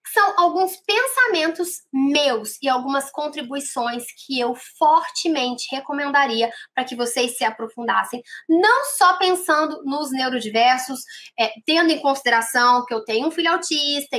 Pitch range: 245-310 Hz